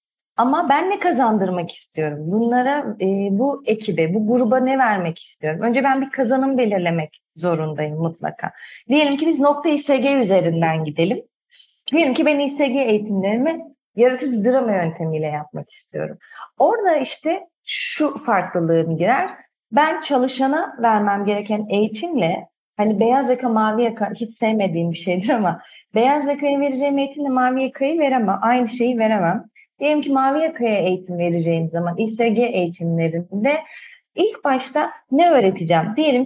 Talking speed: 135 wpm